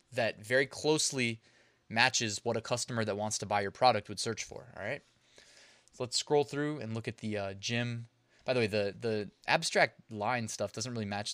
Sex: male